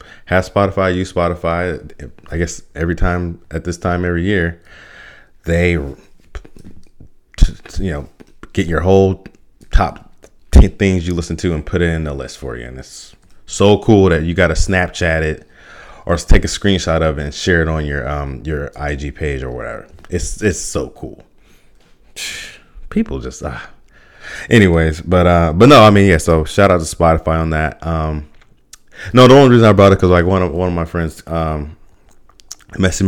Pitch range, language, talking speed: 80-110 Hz, English, 180 wpm